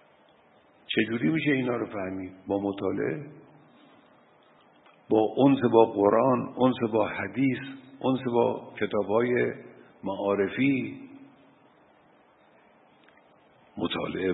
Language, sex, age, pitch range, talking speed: Persian, male, 50-69, 105-140 Hz, 85 wpm